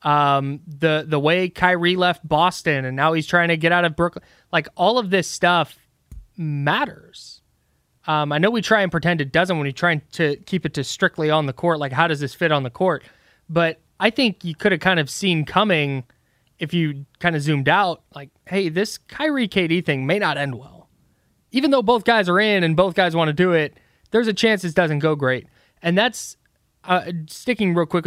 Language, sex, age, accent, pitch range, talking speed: English, male, 20-39, American, 145-190 Hz, 220 wpm